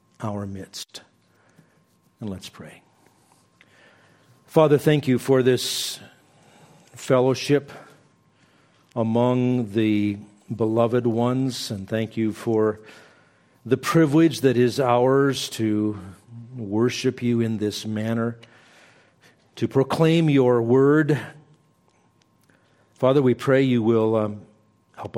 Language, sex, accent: English, male, American